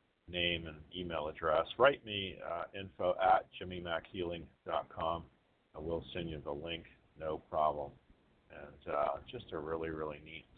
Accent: American